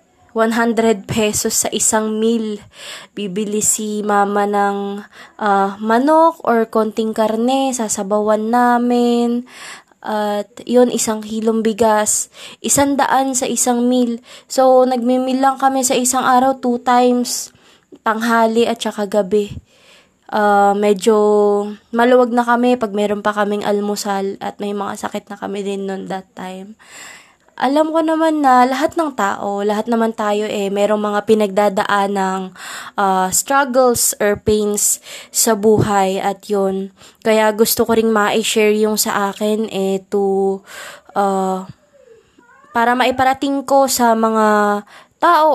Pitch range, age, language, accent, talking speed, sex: 205-245 Hz, 20-39, Filipino, native, 135 wpm, female